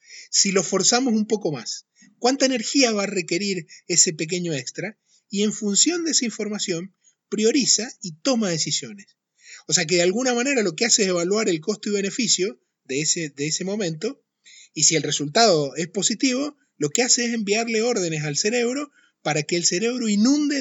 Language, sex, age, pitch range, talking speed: Spanish, male, 30-49, 150-220 Hz, 180 wpm